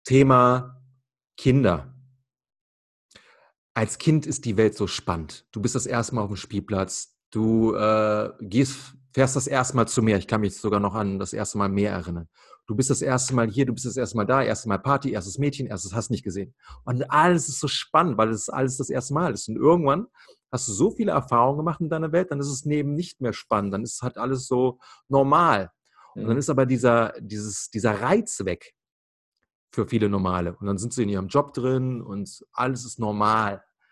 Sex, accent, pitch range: male, German, 105-140 Hz